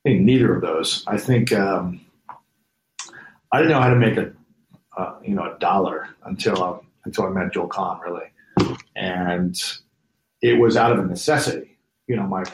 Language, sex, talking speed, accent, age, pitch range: English, male, 180 wpm, American, 40-59, 95-120 Hz